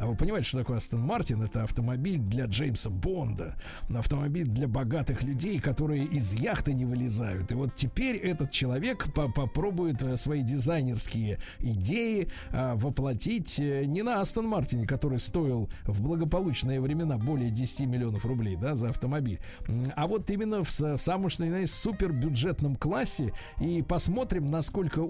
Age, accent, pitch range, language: 50-69, native, 125-175 Hz, Russian